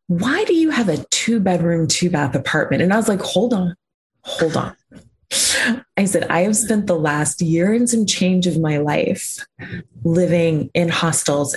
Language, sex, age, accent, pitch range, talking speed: English, female, 20-39, American, 150-200 Hz, 180 wpm